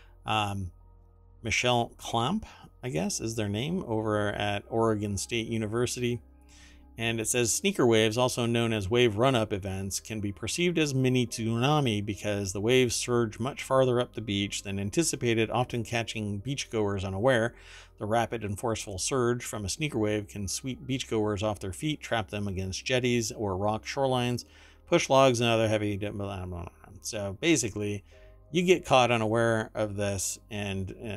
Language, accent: English, American